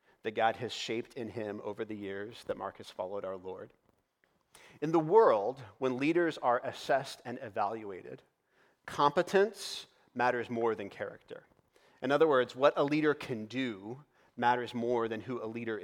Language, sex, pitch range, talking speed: English, male, 110-130 Hz, 165 wpm